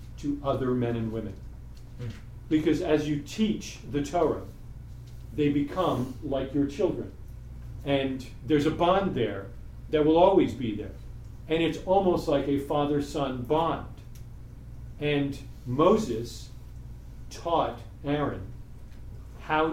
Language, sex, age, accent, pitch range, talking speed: English, male, 40-59, American, 115-155 Hz, 115 wpm